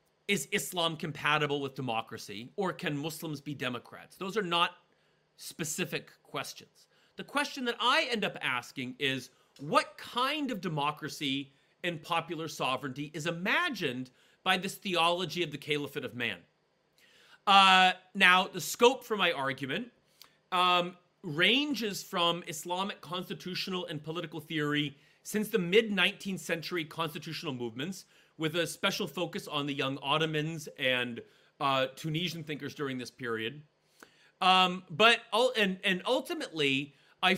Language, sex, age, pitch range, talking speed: Turkish, male, 40-59, 150-205 Hz, 135 wpm